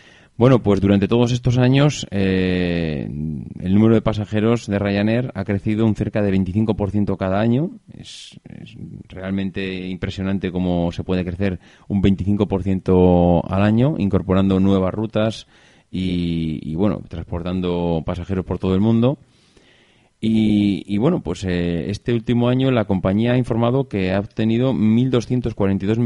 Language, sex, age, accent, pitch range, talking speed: Spanish, male, 30-49, Spanish, 90-110 Hz, 140 wpm